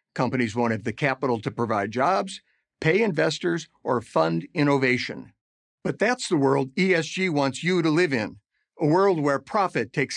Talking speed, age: 160 wpm, 50-69